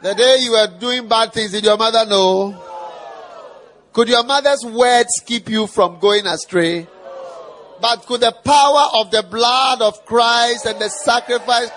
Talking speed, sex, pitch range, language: 165 wpm, male, 180-245 Hz, English